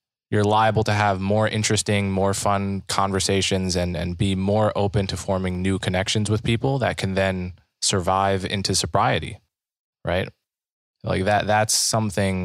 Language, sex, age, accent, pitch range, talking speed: English, male, 20-39, American, 90-110 Hz, 150 wpm